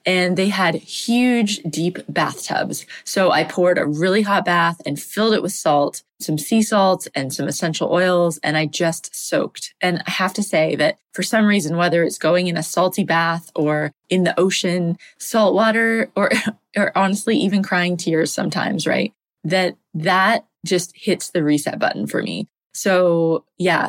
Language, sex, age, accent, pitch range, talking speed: English, female, 20-39, American, 165-200 Hz, 175 wpm